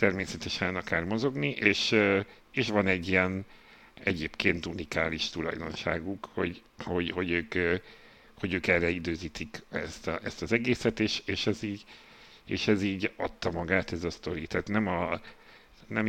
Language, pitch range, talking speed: Hungarian, 85-100 Hz, 150 wpm